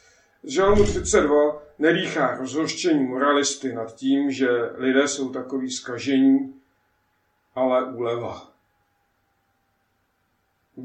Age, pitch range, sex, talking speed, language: 50-69, 115-145 Hz, male, 85 wpm, Czech